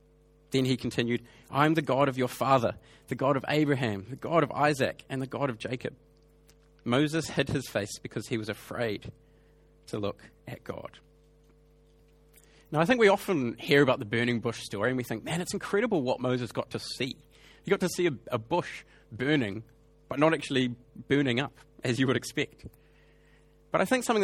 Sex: male